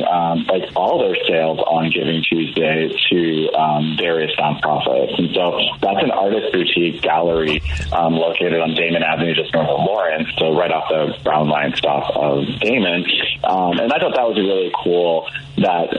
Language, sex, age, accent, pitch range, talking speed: English, male, 30-49, American, 75-85 Hz, 175 wpm